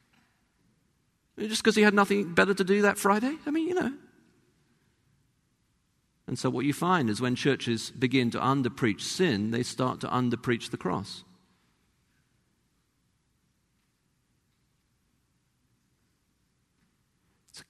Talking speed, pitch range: 110 wpm, 105-135 Hz